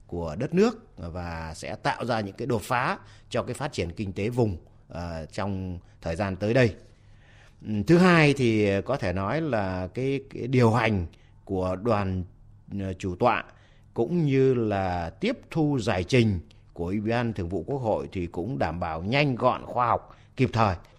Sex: male